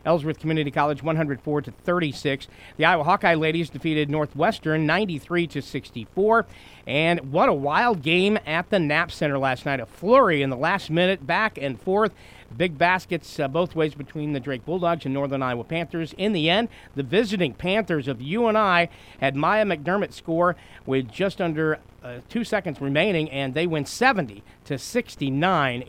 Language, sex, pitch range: English, male, 140-180 Hz